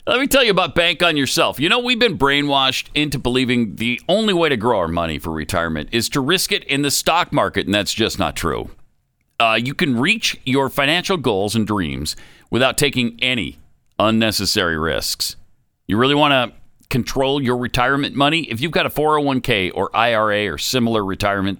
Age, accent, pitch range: 50-69, American, 105-155 Hz